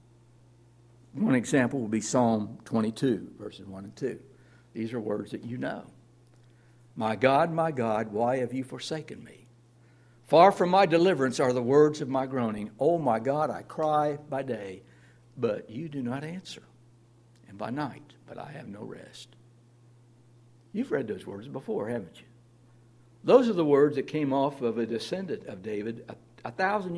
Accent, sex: American, male